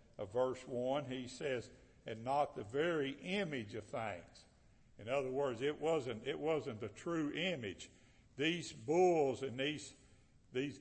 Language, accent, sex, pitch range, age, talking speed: English, American, male, 110-145 Hz, 60-79, 150 wpm